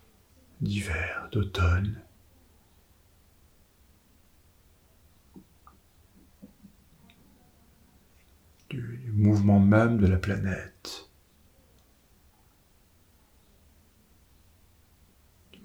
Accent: French